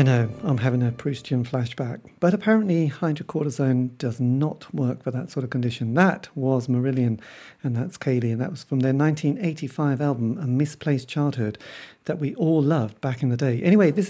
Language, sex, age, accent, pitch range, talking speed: English, male, 40-59, British, 125-155 Hz, 185 wpm